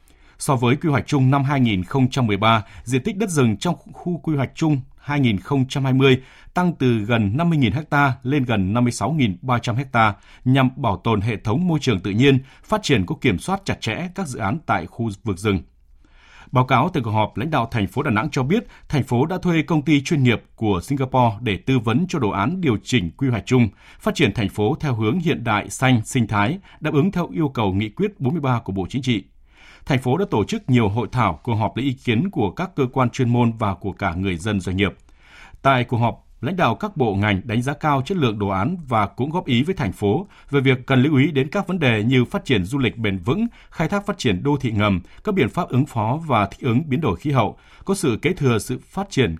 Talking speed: 235 wpm